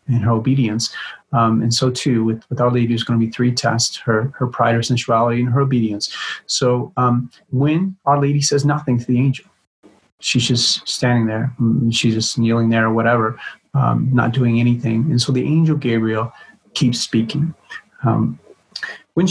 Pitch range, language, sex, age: 115-145 Hz, English, male, 40-59